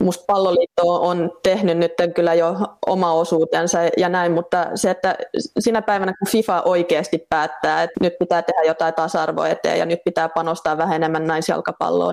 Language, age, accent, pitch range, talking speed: Finnish, 20-39, native, 170-195 Hz, 170 wpm